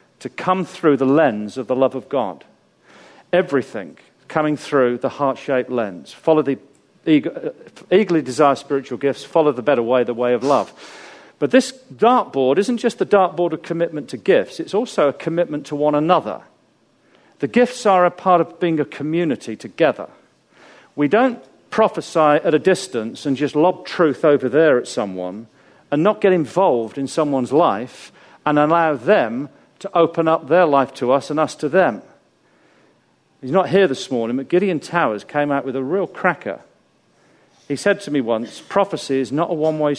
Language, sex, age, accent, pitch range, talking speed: English, male, 40-59, British, 135-180 Hz, 175 wpm